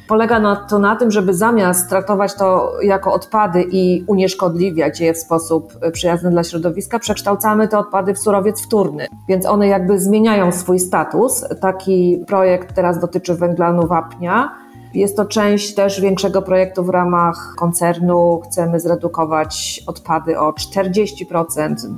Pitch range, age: 170-200 Hz, 30-49